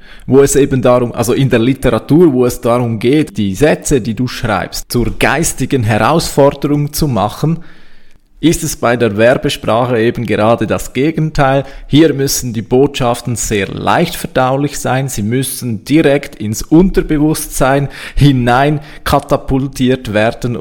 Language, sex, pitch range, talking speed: German, male, 115-145 Hz, 135 wpm